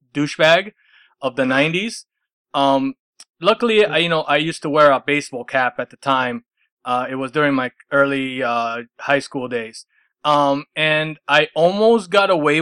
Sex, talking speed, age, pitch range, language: male, 165 wpm, 20-39, 140-170 Hz, English